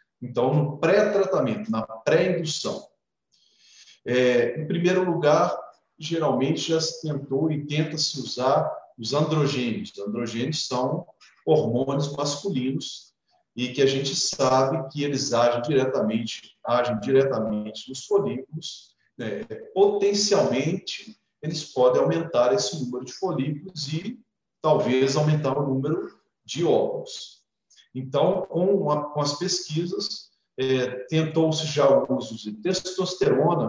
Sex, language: male, Portuguese